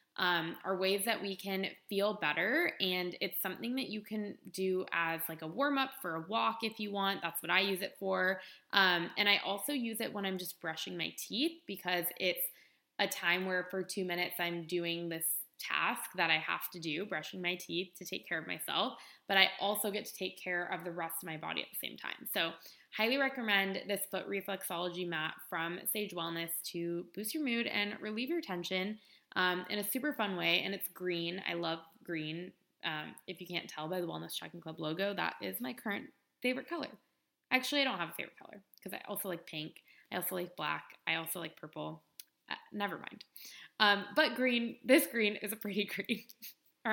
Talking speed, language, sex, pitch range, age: 210 wpm, English, female, 175-215 Hz, 20-39